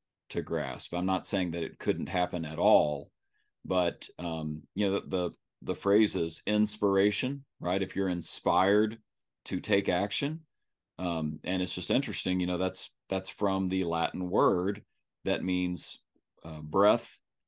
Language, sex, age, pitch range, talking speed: English, male, 40-59, 80-95 Hz, 155 wpm